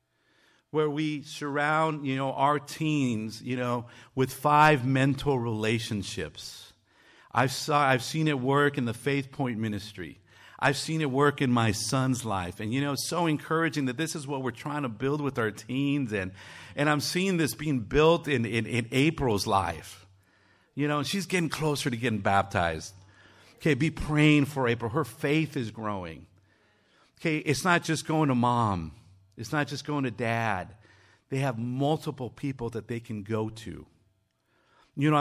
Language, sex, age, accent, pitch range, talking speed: English, male, 50-69, American, 110-150 Hz, 175 wpm